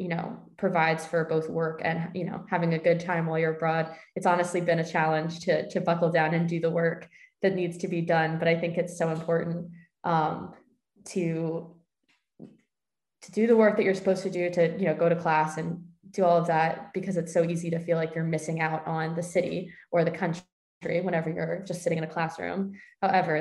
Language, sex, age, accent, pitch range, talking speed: English, female, 20-39, American, 165-180 Hz, 220 wpm